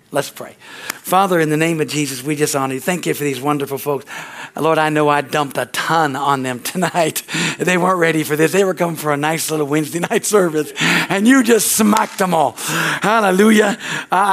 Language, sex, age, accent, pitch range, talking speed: English, male, 60-79, American, 150-180 Hz, 210 wpm